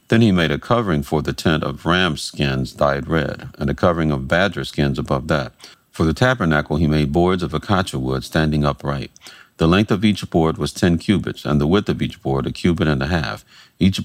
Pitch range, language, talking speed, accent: 70-90 Hz, English, 220 wpm, American